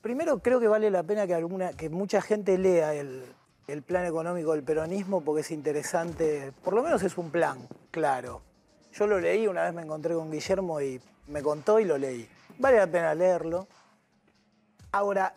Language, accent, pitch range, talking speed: Spanish, Argentinian, 155-200 Hz, 185 wpm